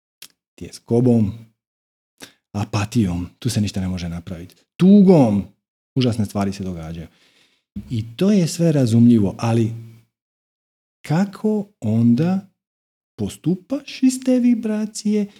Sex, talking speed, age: male, 100 wpm, 40-59